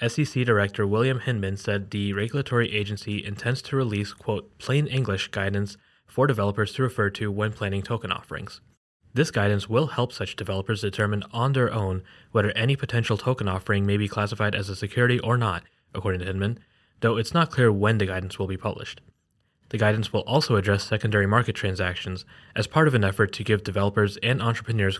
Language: English